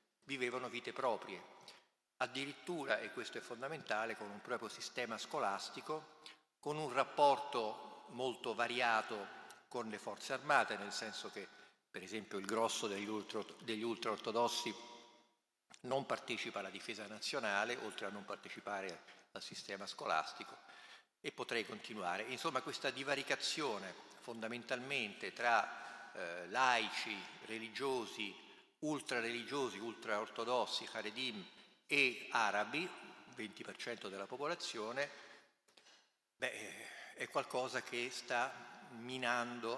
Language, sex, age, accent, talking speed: Italian, male, 50-69, native, 105 wpm